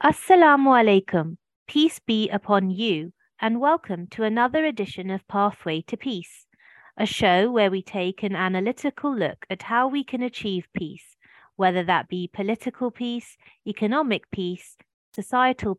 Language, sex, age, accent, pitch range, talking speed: English, female, 30-49, British, 185-245 Hz, 140 wpm